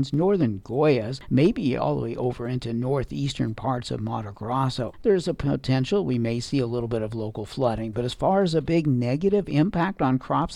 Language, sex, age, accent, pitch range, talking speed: English, male, 60-79, American, 120-145 Hz, 200 wpm